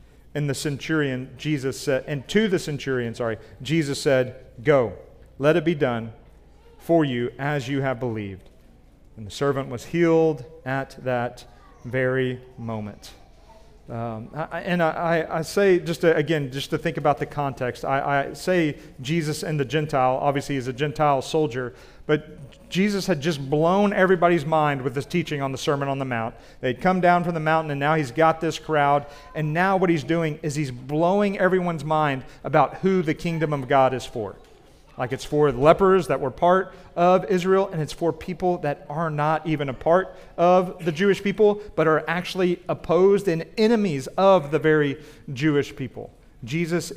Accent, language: American, English